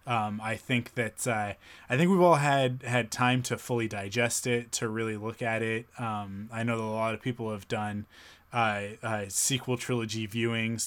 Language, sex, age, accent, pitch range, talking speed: English, male, 20-39, American, 105-125 Hz, 200 wpm